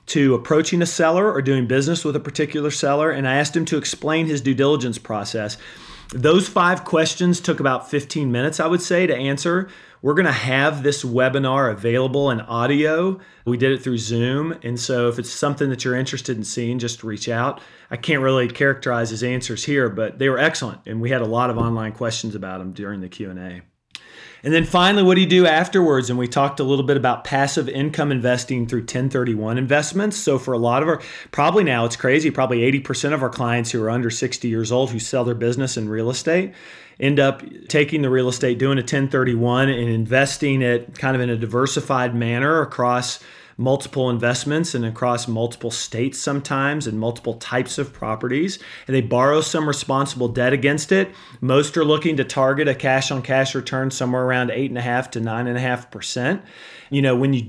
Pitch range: 120-145 Hz